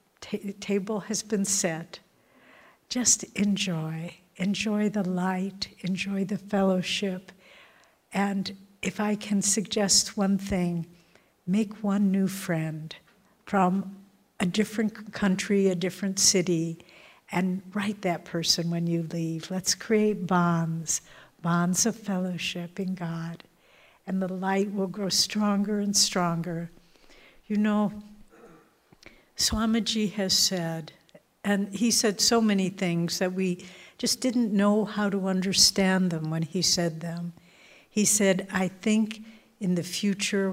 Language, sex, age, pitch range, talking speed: English, female, 60-79, 175-205 Hz, 125 wpm